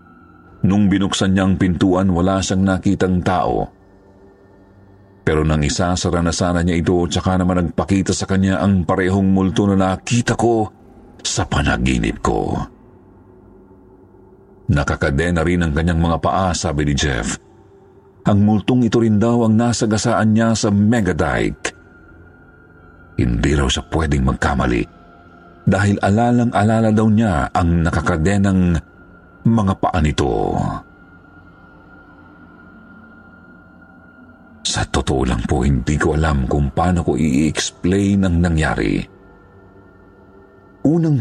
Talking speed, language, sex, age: 110 wpm, Filipino, male, 50-69